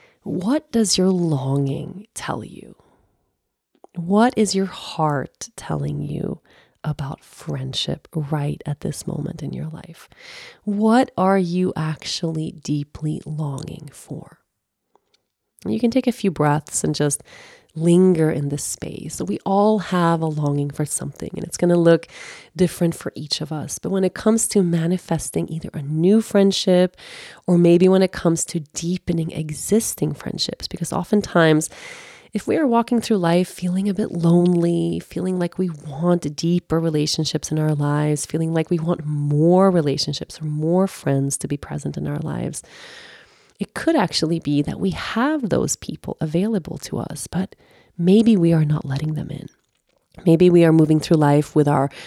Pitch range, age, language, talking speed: 150-190 Hz, 30-49, English, 160 wpm